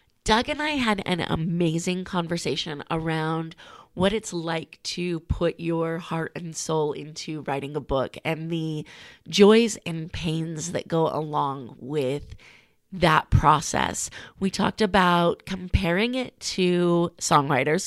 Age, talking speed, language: 30-49, 130 wpm, English